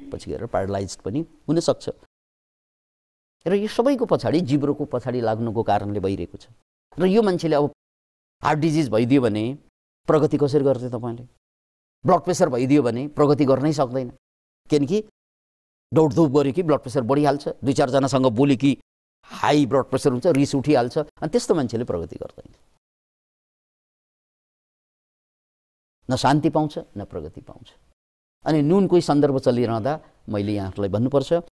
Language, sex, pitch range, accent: English, male, 115-165 Hz, Indian